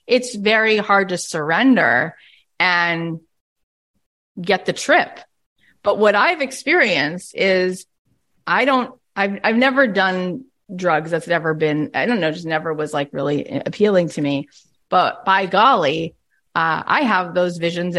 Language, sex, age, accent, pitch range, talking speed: English, female, 30-49, American, 185-295 Hz, 145 wpm